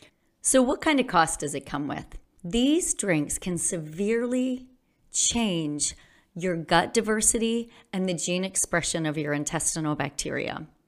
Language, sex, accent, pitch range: English, female, American, 160-205 Hz